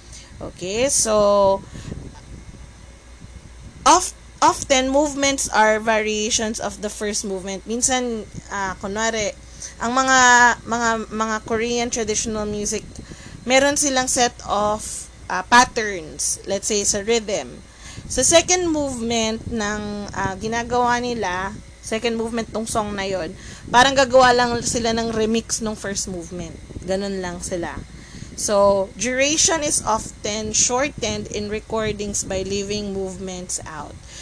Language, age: Filipino, 20-39